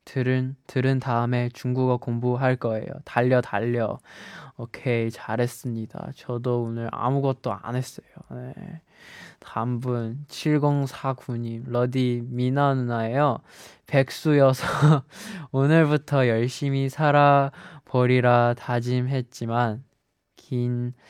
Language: Chinese